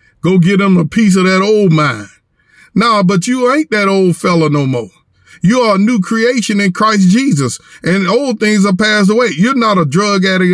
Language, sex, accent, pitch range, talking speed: English, male, American, 155-205 Hz, 215 wpm